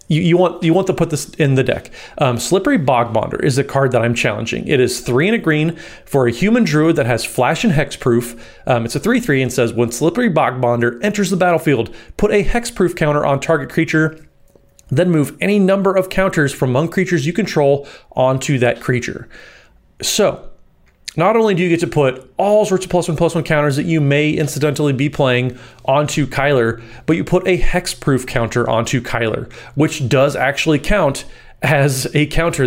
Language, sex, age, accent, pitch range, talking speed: English, male, 30-49, American, 125-165 Hz, 200 wpm